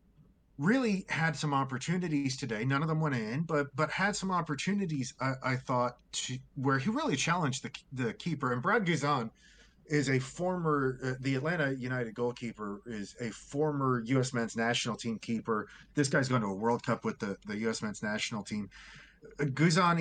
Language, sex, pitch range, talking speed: English, male, 120-150 Hz, 185 wpm